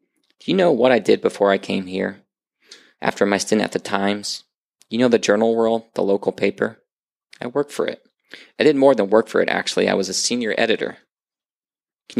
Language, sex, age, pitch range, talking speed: English, male, 20-39, 95-115 Hz, 205 wpm